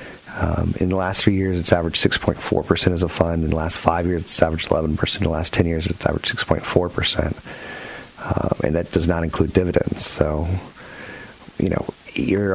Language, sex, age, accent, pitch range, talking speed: English, male, 40-59, American, 85-95 Hz, 185 wpm